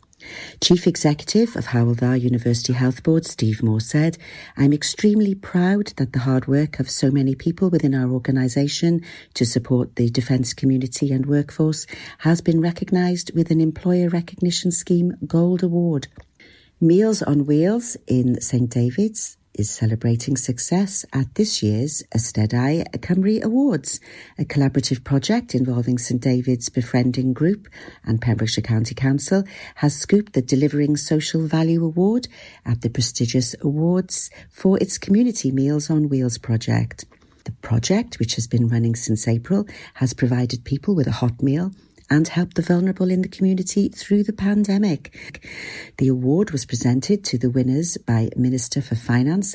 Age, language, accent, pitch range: 50-69, English, British, 125-180 Hz